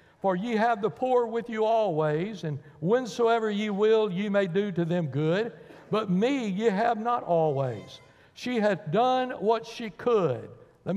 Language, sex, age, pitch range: English, male, 60-79, 165-220 Hz